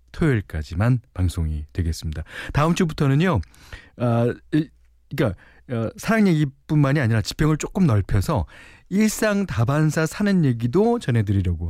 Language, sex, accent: Korean, male, native